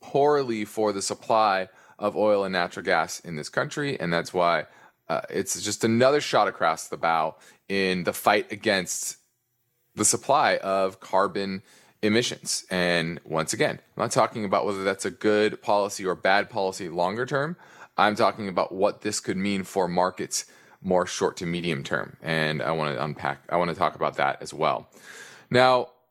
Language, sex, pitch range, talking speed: English, male, 95-120 Hz, 175 wpm